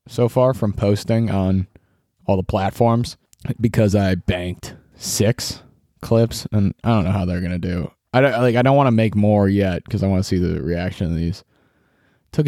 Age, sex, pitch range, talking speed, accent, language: 20-39, male, 95-120 Hz, 200 wpm, American, English